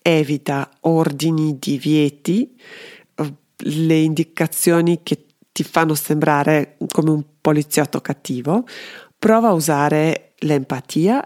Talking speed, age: 95 wpm, 40-59